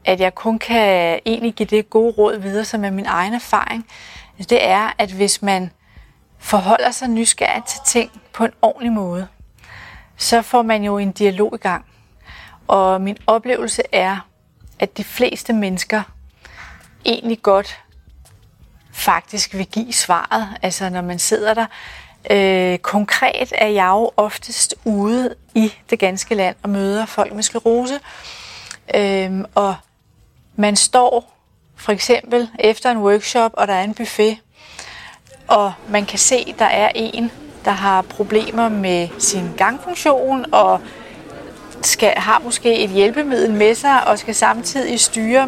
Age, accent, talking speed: 30-49, native, 150 wpm